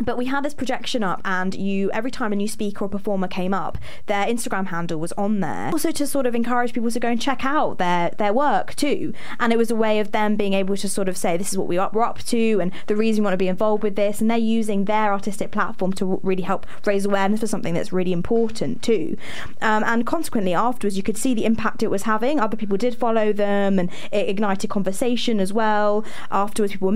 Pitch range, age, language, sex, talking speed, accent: 195-235 Hz, 20-39, English, female, 245 wpm, British